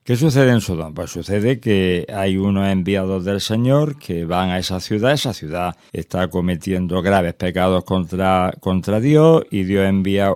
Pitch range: 95-125 Hz